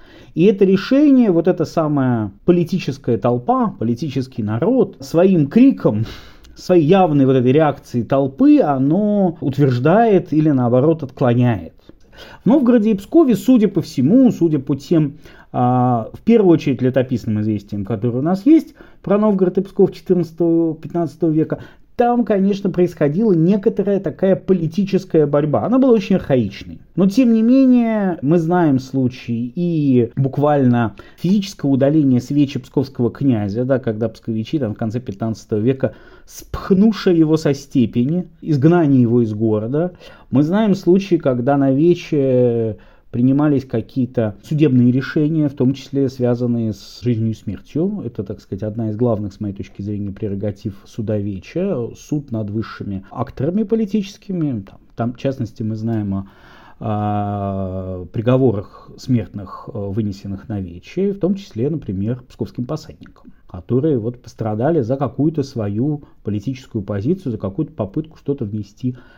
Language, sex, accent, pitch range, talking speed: Russian, male, native, 115-175 Hz, 135 wpm